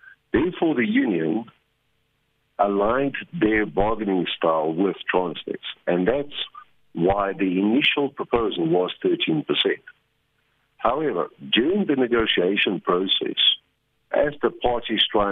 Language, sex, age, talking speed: English, male, 60-79, 100 wpm